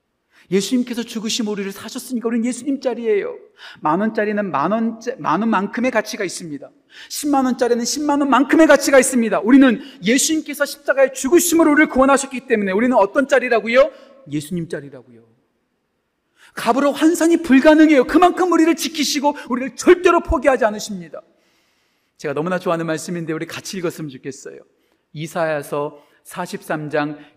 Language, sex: Korean, male